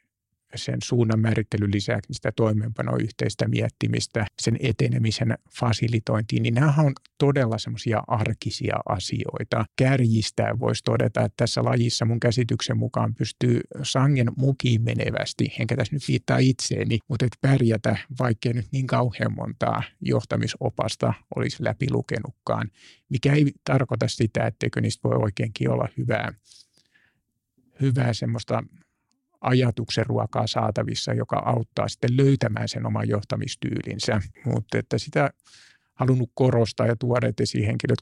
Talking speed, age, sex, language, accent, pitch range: 120 wpm, 50-69, male, Finnish, native, 110-130 Hz